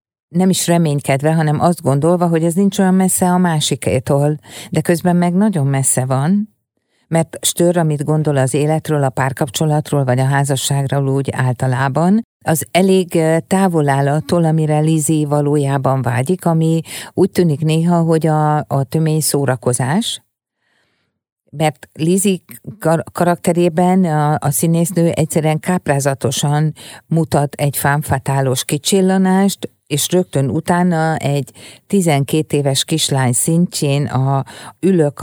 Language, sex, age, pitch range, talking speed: Hungarian, female, 50-69, 140-170 Hz, 120 wpm